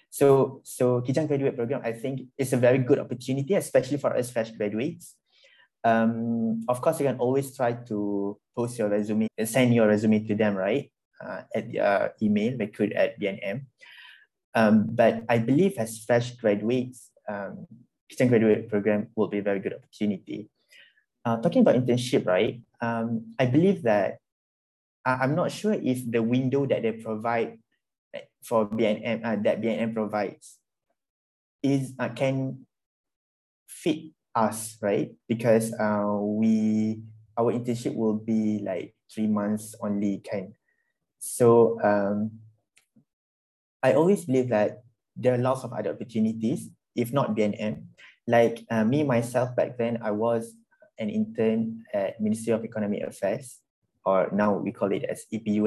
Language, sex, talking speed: Malay, male, 155 wpm